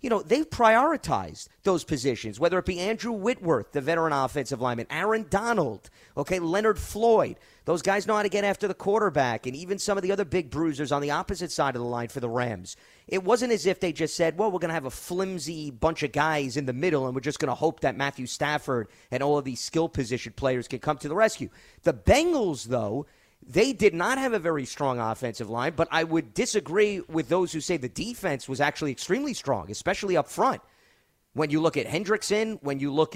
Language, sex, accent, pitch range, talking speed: English, male, American, 135-185 Hz, 225 wpm